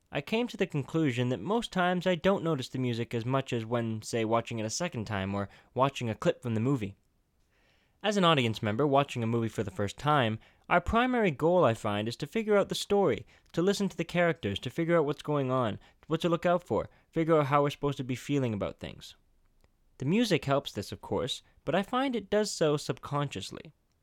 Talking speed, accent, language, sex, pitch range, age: 225 wpm, American, English, male, 115-170 Hz, 20-39